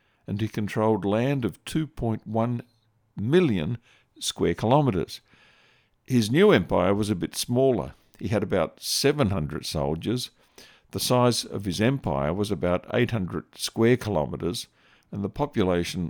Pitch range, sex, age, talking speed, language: 95-120 Hz, male, 50-69, 125 wpm, English